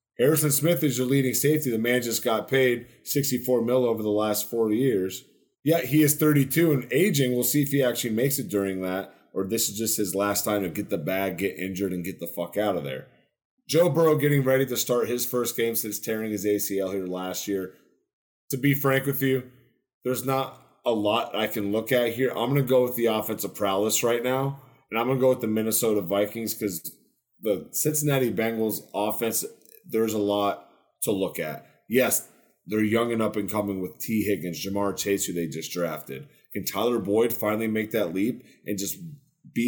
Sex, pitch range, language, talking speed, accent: male, 105-130 Hz, English, 210 wpm, American